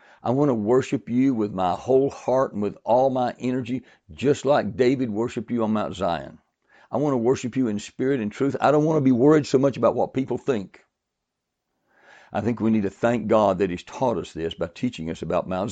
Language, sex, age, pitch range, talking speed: English, male, 60-79, 100-135 Hz, 230 wpm